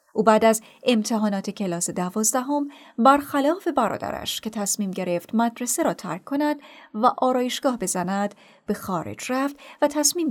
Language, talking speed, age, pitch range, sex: Persian, 135 wpm, 30-49, 200-275 Hz, female